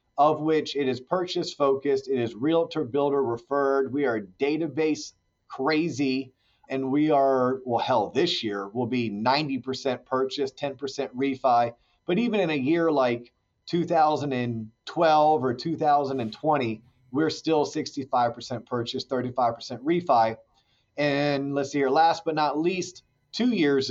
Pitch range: 130-160 Hz